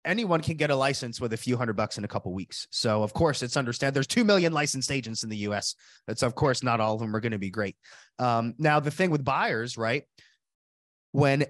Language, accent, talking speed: English, American, 255 wpm